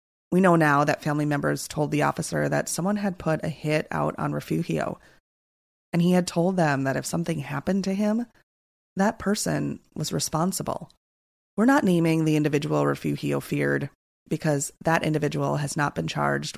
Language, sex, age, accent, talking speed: English, female, 30-49, American, 170 wpm